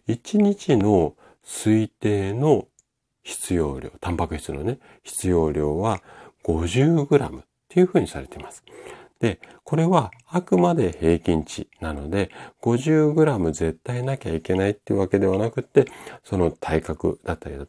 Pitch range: 80-135 Hz